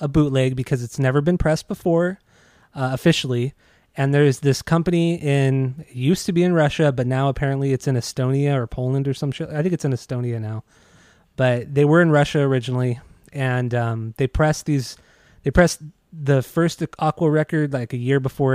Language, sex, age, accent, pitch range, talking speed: English, male, 20-39, American, 130-155 Hz, 190 wpm